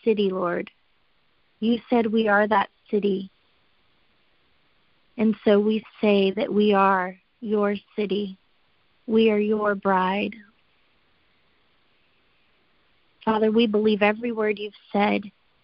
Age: 30-49